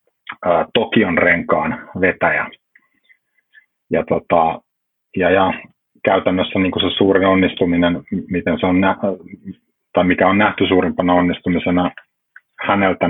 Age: 30-49